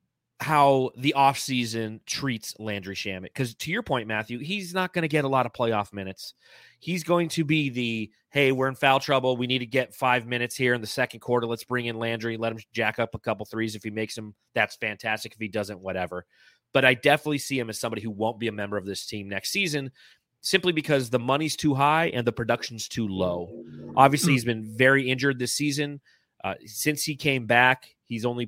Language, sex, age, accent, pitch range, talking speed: English, male, 30-49, American, 110-140 Hz, 225 wpm